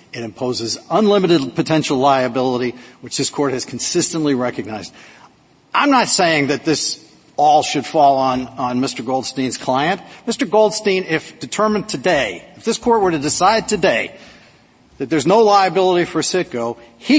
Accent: American